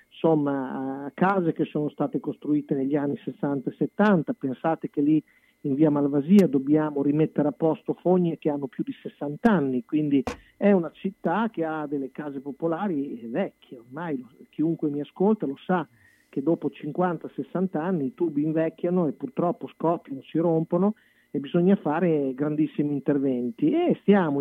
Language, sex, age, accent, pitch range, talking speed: Italian, male, 40-59, native, 140-175 Hz, 155 wpm